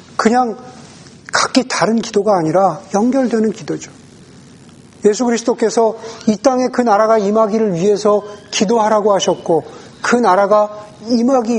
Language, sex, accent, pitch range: Korean, male, native, 165-225 Hz